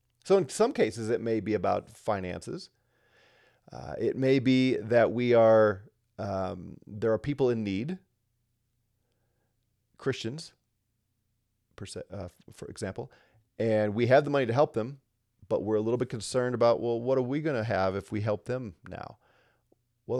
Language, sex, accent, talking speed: English, male, American, 160 wpm